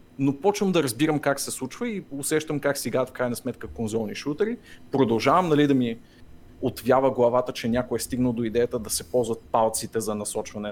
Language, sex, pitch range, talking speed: Bulgarian, male, 115-145 Hz, 195 wpm